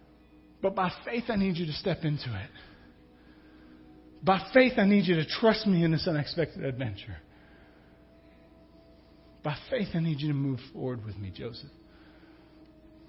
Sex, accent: male, American